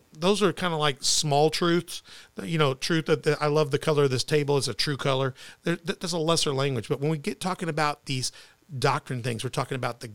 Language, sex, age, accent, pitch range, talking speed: English, male, 40-59, American, 135-155 Hz, 230 wpm